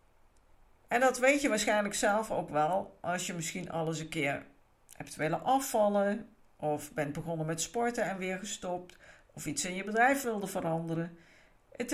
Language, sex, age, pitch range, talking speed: Dutch, female, 50-69, 175-245 Hz, 165 wpm